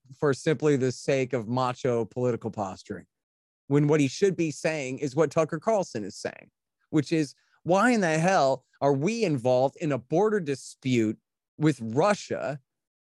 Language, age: English, 30-49